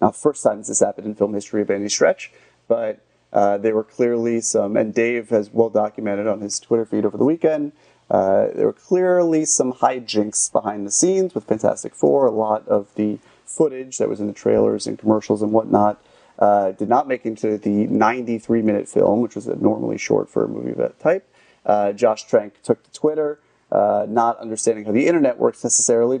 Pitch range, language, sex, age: 105-120 Hz, English, male, 30-49